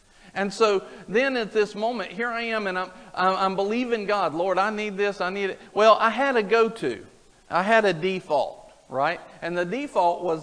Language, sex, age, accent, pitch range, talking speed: English, male, 50-69, American, 170-210 Hz, 200 wpm